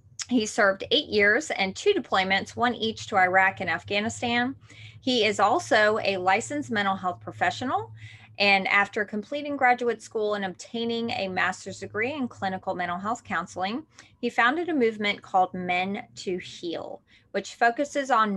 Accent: American